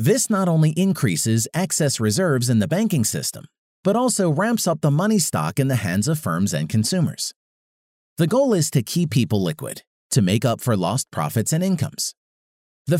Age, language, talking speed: 40-59, English, 185 wpm